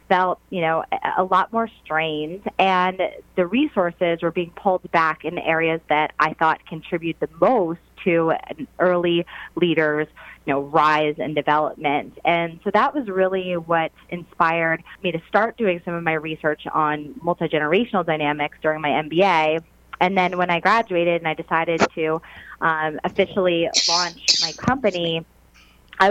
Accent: American